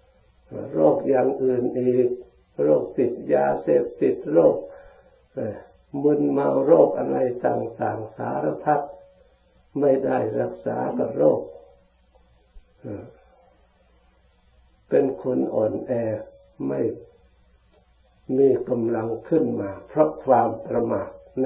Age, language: 60-79, Thai